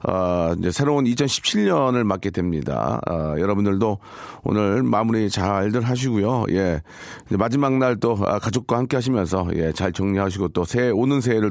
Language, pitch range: Korean, 105-155 Hz